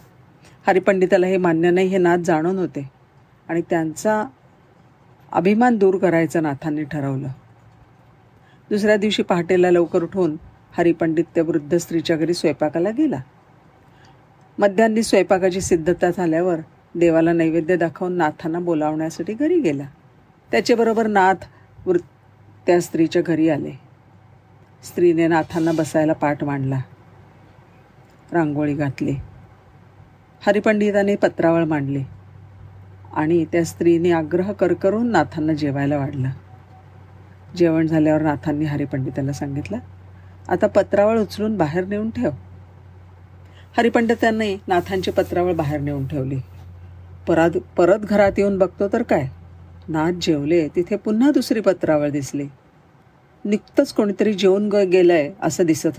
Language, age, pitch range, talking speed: Marathi, 50-69, 130-185 Hz, 105 wpm